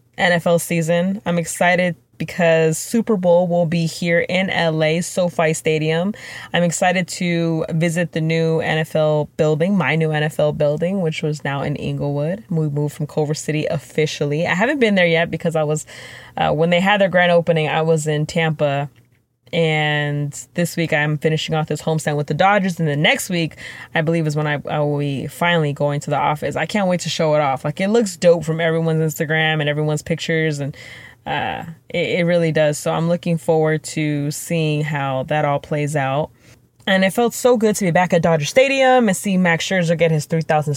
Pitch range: 150-175 Hz